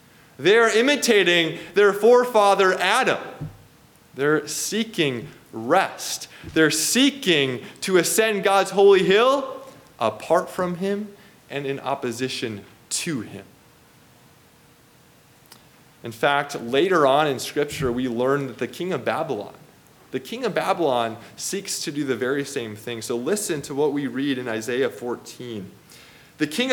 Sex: male